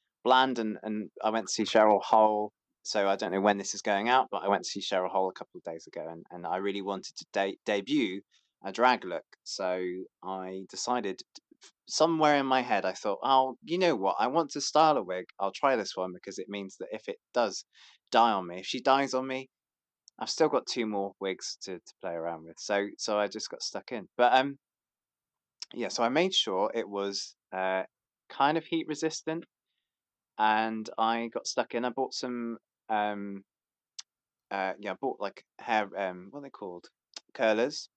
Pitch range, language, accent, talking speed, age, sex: 100-135 Hz, English, British, 210 wpm, 20-39, male